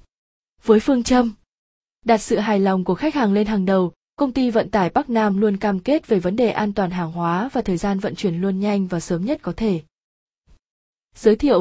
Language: Vietnamese